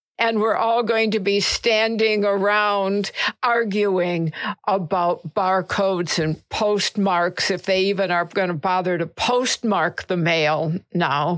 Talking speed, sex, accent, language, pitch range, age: 130 wpm, female, American, English, 180-220 Hz, 60-79